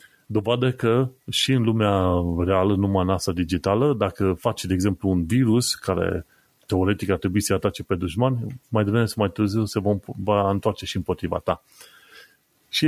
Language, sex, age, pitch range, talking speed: Romanian, male, 30-49, 95-120 Hz, 170 wpm